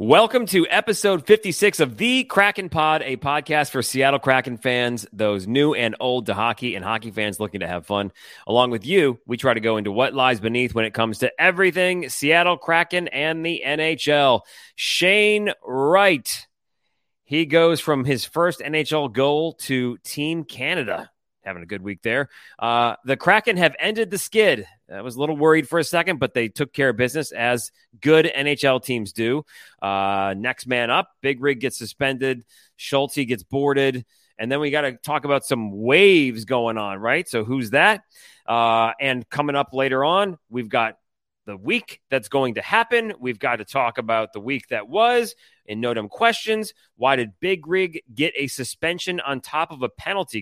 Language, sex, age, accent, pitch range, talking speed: English, male, 30-49, American, 120-165 Hz, 185 wpm